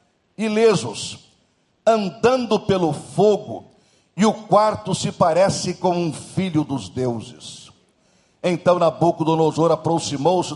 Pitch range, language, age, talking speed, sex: 155-205 Hz, Portuguese, 60-79, 100 wpm, male